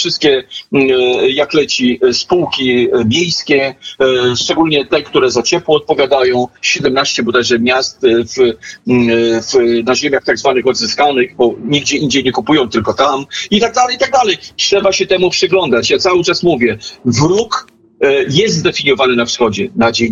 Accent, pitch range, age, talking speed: native, 125-185 Hz, 40-59, 140 wpm